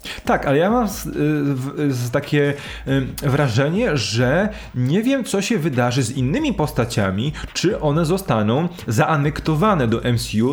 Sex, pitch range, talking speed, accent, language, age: male, 120-150 Hz, 120 wpm, native, Polish, 20-39